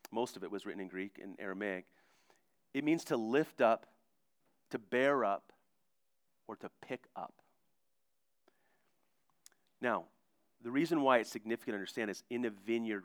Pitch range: 105-135 Hz